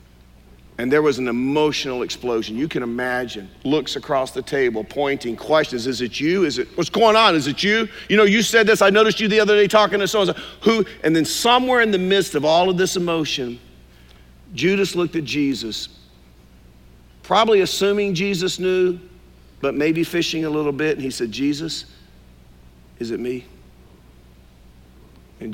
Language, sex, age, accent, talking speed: English, male, 50-69, American, 175 wpm